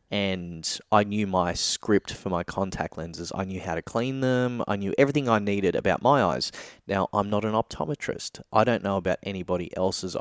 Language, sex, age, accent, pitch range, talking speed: English, male, 20-39, Australian, 90-110 Hz, 200 wpm